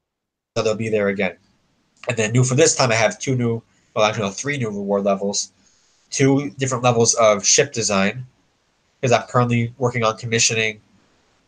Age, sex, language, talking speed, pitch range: 20-39, male, English, 185 wpm, 105-120 Hz